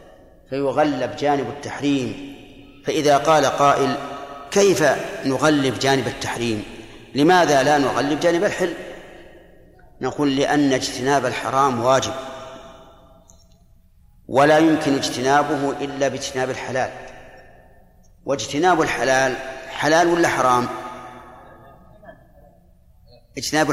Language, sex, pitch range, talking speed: Arabic, male, 130-165 Hz, 80 wpm